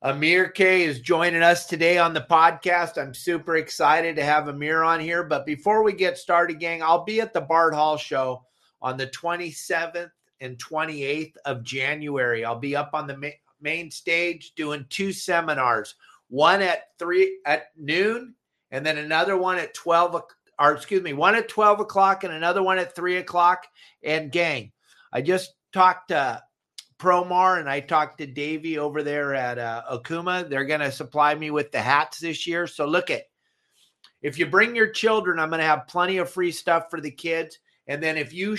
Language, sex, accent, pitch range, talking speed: English, male, American, 145-175 Hz, 190 wpm